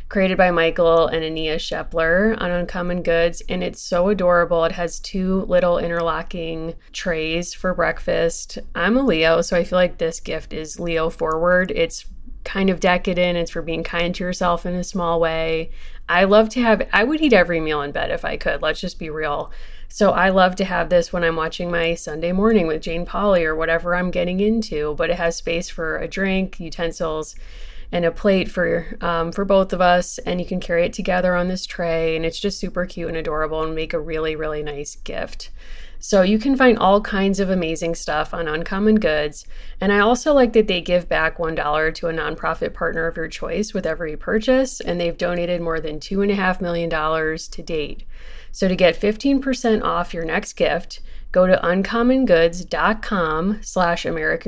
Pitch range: 165-190 Hz